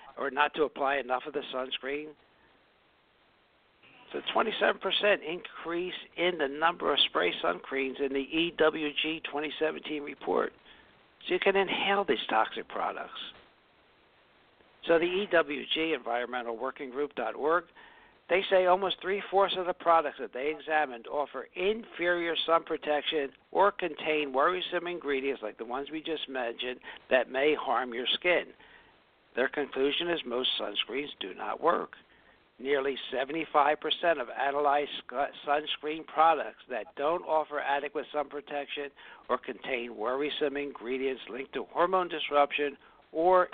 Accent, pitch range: American, 140-175 Hz